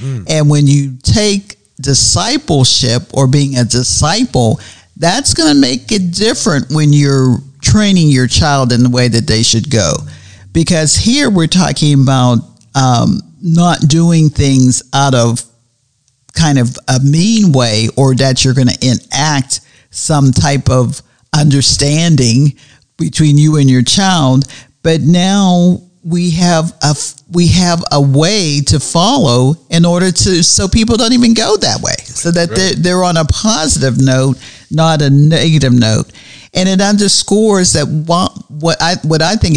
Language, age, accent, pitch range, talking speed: English, 50-69, American, 130-170 Hz, 150 wpm